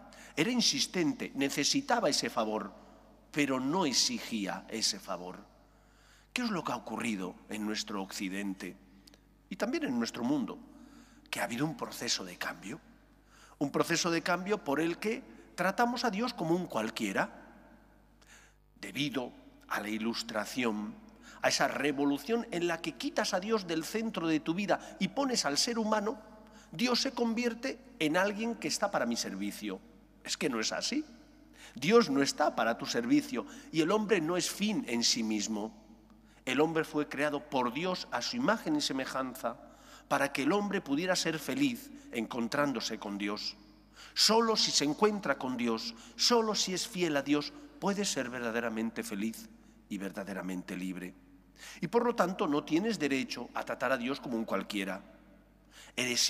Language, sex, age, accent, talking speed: English, male, 50-69, Spanish, 160 wpm